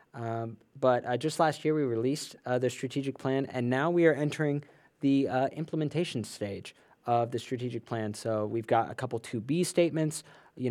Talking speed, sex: 185 wpm, male